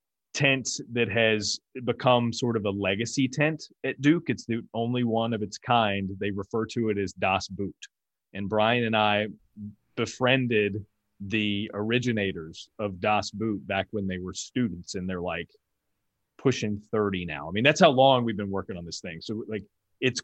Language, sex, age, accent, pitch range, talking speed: English, male, 30-49, American, 100-120 Hz, 180 wpm